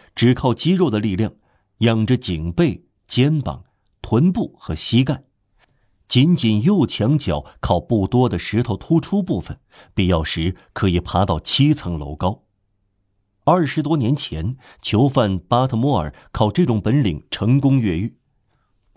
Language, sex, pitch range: Chinese, male, 90-125 Hz